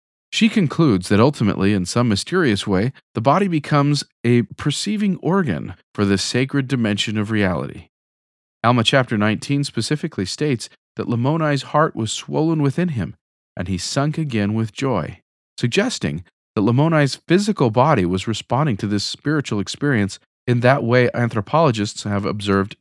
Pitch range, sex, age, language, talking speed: 105-150 Hz, male, 40-59, English, 145 wpm